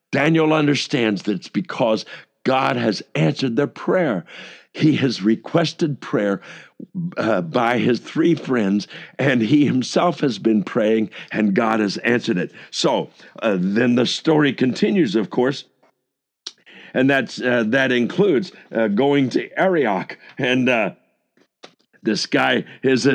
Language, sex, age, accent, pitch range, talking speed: English, male, 60-79, American, 120-150 Hz, 135 wpm